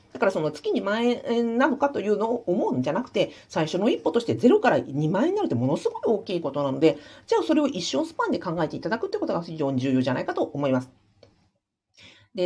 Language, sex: Japanese, female